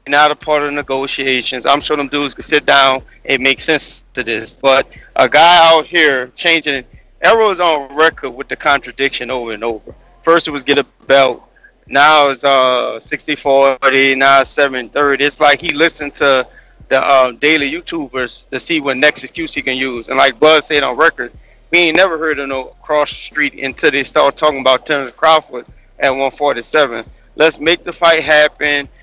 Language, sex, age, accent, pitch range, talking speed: English, male, 30-49, American, 130-155 Hz, 190 wpm